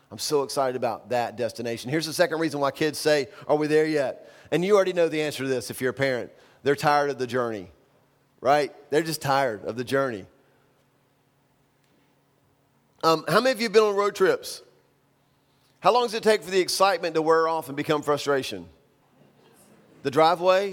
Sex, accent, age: male, American, 40-59